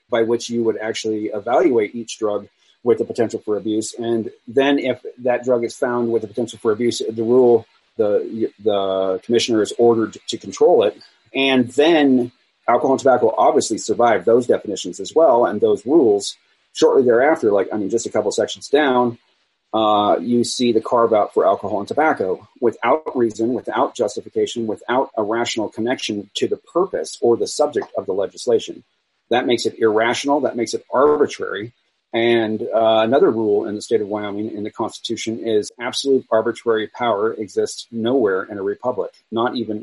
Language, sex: English, male